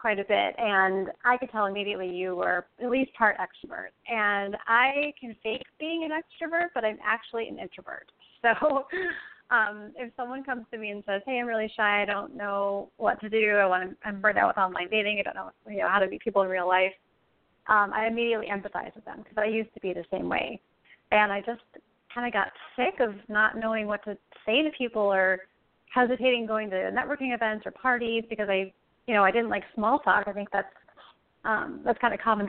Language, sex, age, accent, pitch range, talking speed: English, female, 30-49, American, 200-240 Hz, 220 wpm